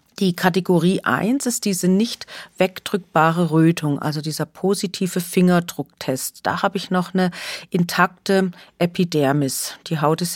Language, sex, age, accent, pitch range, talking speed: German, female, 40-59, German, 160-200 Hz, 125 wpm